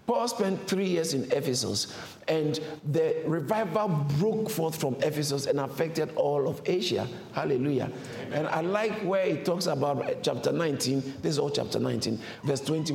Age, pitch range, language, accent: 50-69, 135-215 Hz, English, Nigerian